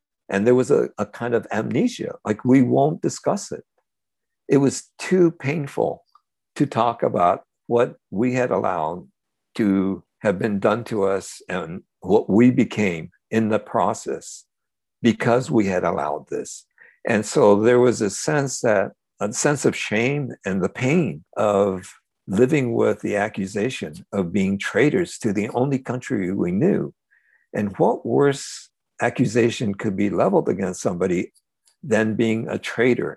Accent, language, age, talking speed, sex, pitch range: American, English, 60-79, 145 wpm, male, 105-135 Hz